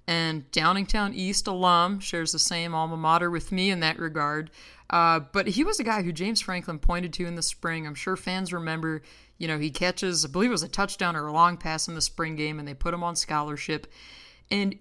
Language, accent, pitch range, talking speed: English, American, 155-190 Hz, 230 wpm